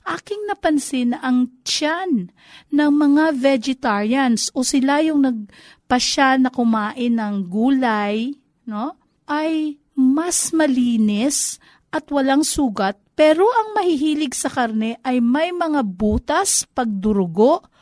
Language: Filipino